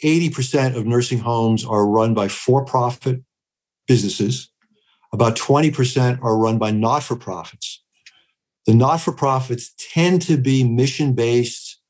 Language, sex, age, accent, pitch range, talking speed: English, male, 50-69, American, 110-130 Hz, 100 wpm